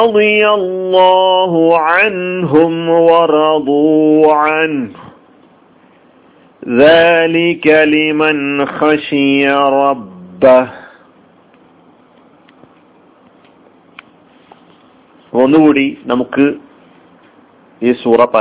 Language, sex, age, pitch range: Malayalam, male, 50-69, 140-165 Hz